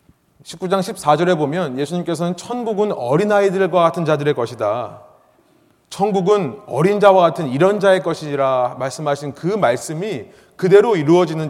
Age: 30-49